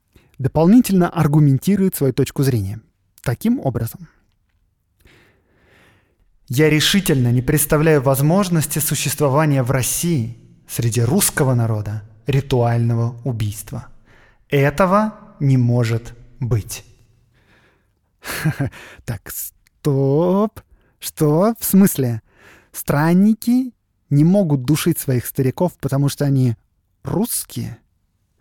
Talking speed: 80 wpm